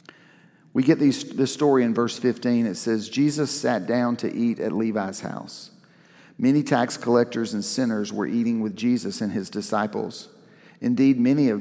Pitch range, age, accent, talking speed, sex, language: 110-145 Hz, 50-69, American, 165 wpm, male, English